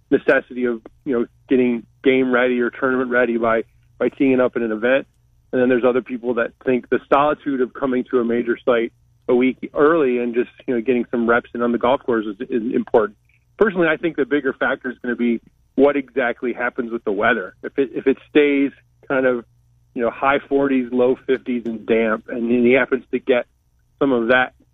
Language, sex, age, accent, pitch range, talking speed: English, male, 30-49, American, 115-130 Hz, 220 wpm